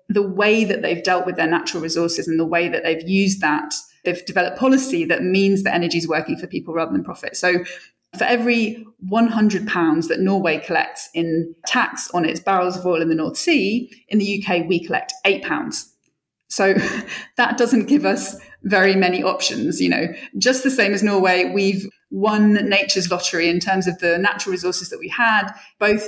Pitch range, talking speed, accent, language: 175-220 Hz, 190 wpm, British, English